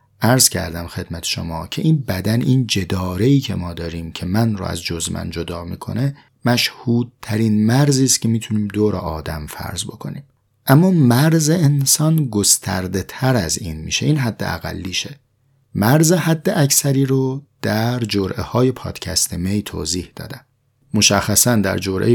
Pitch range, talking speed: 95-135 Hz, 145 wpm